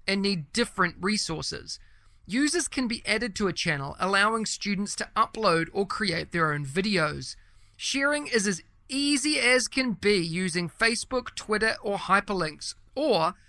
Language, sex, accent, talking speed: English, male, Australian, 145 wpm